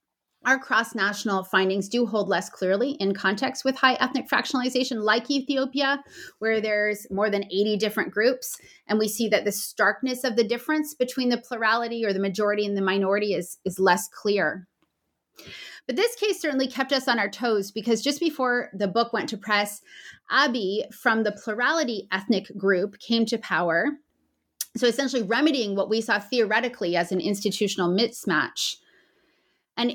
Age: 30-49